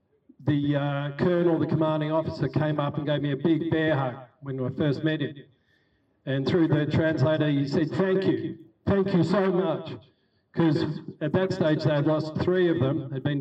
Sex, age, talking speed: male, 50-69, 195 wpm